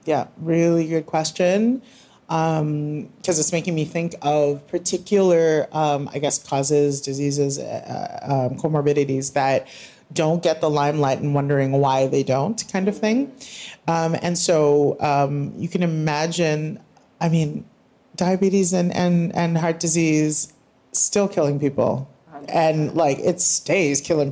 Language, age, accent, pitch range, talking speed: English, 30-49, American, 140-165 Hz, 140 wpm